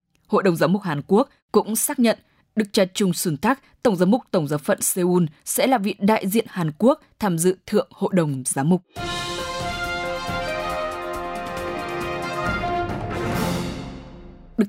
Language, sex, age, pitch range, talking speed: English, female, 20-39, 160-210 Hz, 145 wpm